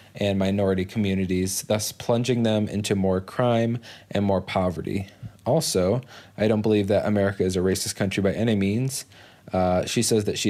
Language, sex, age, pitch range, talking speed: English, male, 20-39, 100-110 Hz, 170 wpm